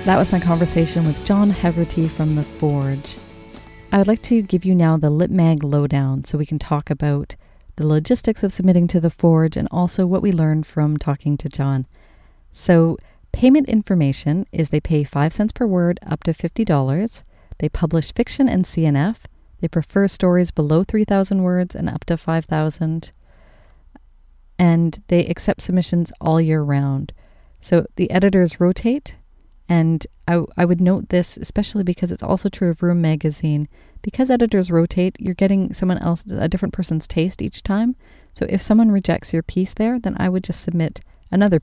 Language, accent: English, American